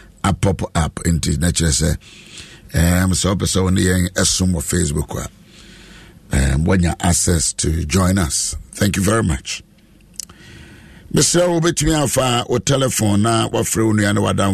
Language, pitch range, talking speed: English, 80-105 Hz, 85 wpm